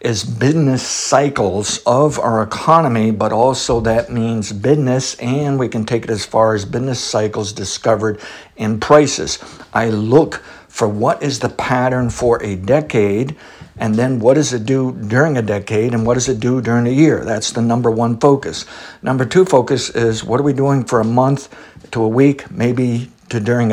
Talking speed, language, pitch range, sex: 185 wpm, English, 110-135 Hz, male